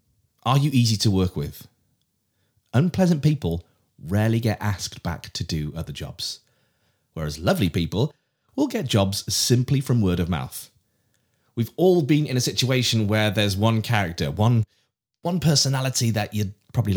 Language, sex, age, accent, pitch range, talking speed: English, male, 30-49, British, 95-125 Hz, 150 wpm